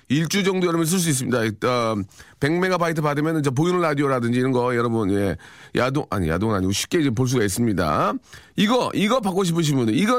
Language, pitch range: Korean, 110-170 Hz